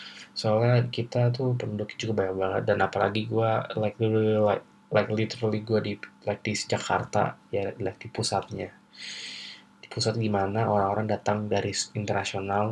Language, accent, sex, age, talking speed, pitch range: Indonesian, native, male, 20-39, 145 wpm, 100-110 Hz